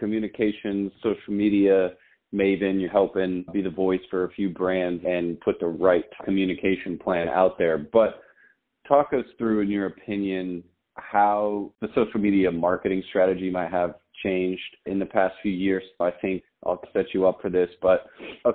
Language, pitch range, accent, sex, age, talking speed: English, 90-105 Hz, American, male, 30-49, 170 wpm